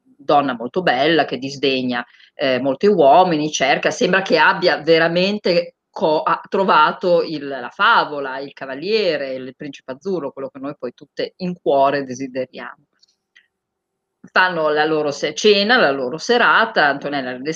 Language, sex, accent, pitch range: Italian, female, native, 145-210 Hz